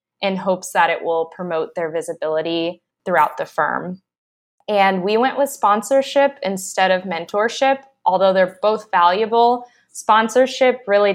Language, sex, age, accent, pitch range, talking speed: English, female, 20-39, American, 165-200 Hz, 135 wpm